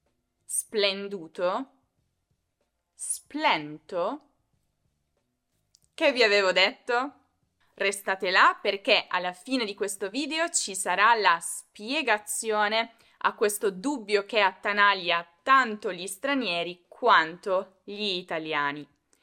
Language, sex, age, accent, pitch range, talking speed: Italian, female, 20-39, native, 195-295 Hz, 90 wpm